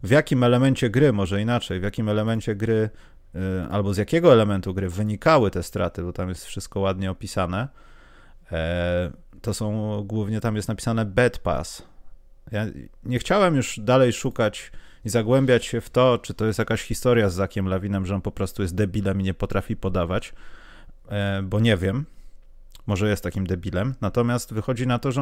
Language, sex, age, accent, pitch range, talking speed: Polish, male, 30-49, native, 95-135 Hz, 175 wpm